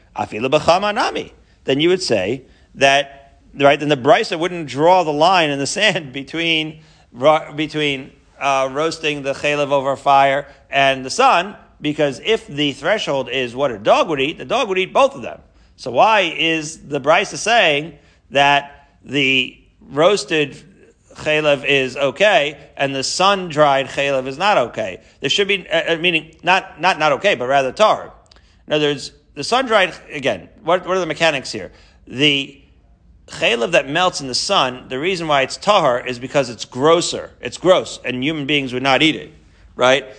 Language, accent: English, American